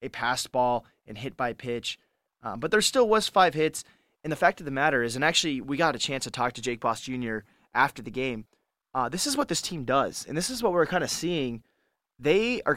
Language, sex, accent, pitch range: English, male, American, 125-165 Hz